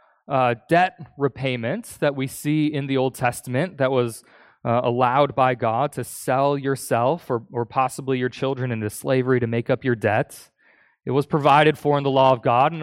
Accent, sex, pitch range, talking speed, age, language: American, male, 120-155 Hz, 190 wpm, 20-39, English